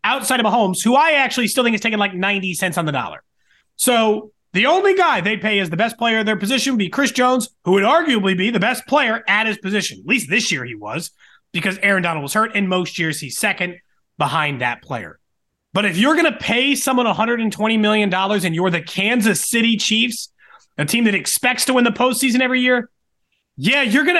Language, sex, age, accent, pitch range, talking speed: English, male, 30-49, American, 185-255 Hz, 225 wpm